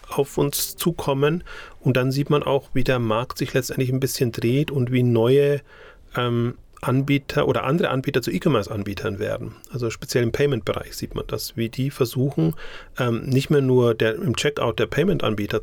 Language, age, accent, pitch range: German, 40-59, German, 115-140 Hz